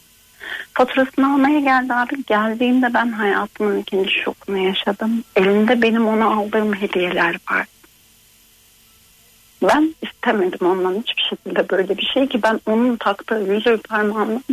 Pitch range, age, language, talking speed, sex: 205-255 Hz, 40-59, Turkish, 125 wpm, female